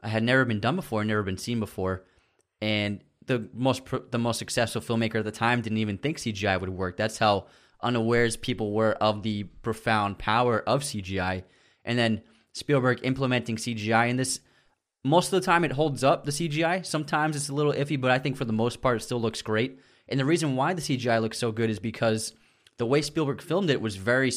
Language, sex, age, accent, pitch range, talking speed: English, male, 20-39, American, 110-130 Hz, 210 wpm